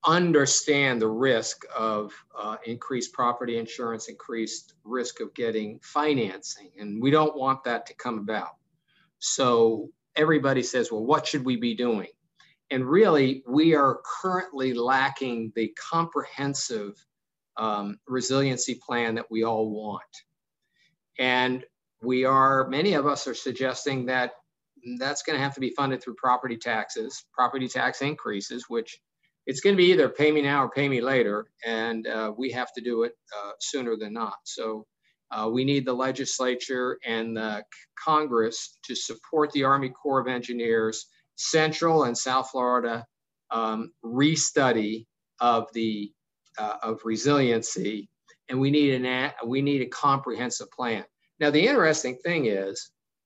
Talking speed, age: 150 wpm, 50-69